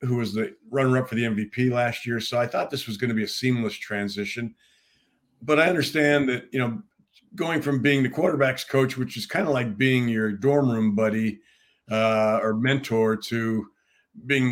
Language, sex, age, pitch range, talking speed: English, male, 50-69, 110-130 Hz, 200 wpm